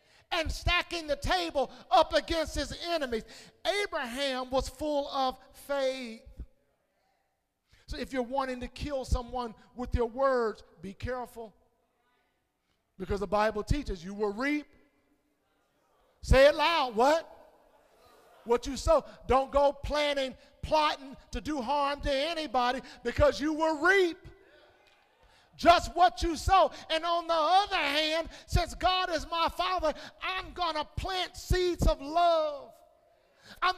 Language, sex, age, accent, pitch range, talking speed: English, male, 50-69, American, 265-340 Hz, 130 wpm